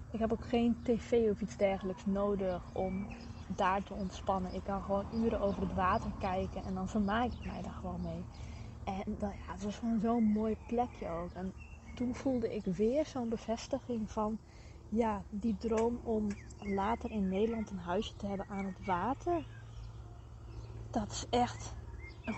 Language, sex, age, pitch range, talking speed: English, female, 20-39, 190-230 Hz, 170 wpm